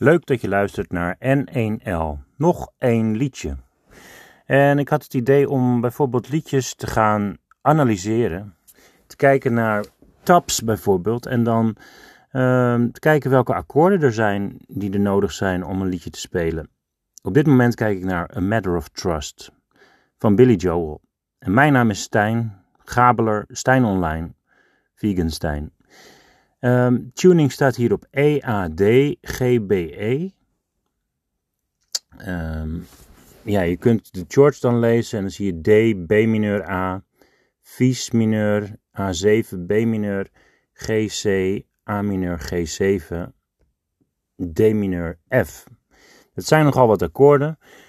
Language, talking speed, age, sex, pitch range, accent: Dutch, 140 wpm, 40-59, male, 95-130 Hz, Dutch